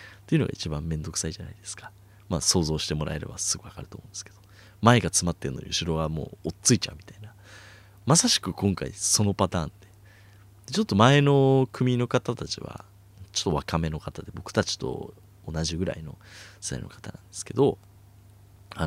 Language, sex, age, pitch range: Japanese, male, 30-49, 90-110 Hz